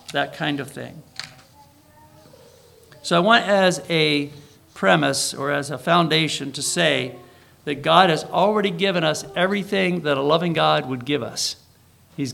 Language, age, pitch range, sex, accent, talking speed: English, 50-69, 135-180 Hz, male, American, 150 wpm